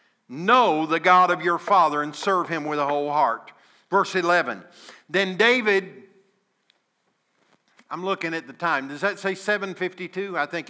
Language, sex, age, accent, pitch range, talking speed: English, male, 50-69, American, 180-255 Hz, 155 wpm